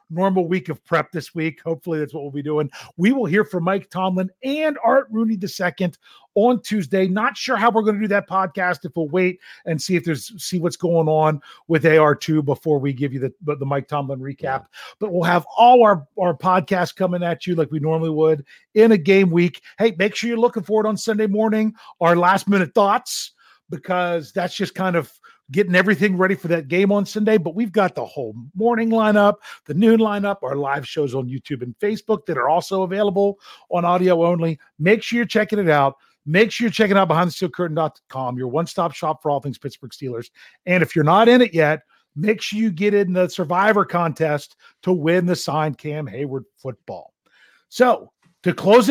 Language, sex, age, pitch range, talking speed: English, male, 40-59, 155-210 Hz, 205 wpm